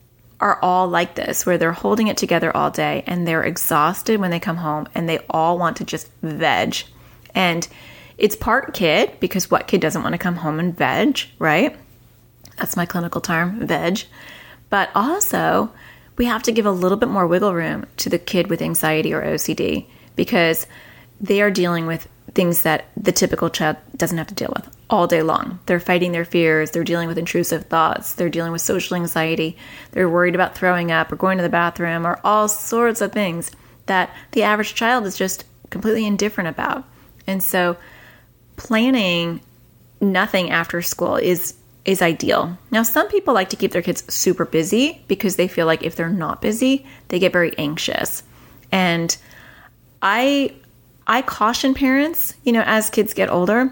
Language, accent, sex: English, American, female